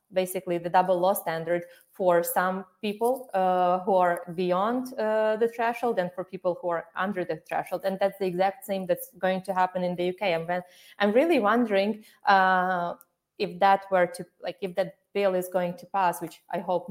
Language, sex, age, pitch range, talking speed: English, female, 20-39, 180-225 Hz, 200 wpm